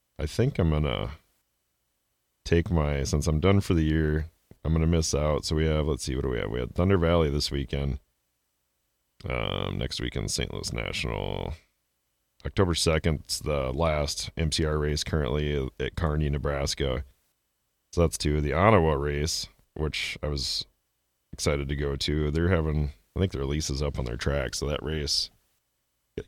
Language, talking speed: English, 175 wpm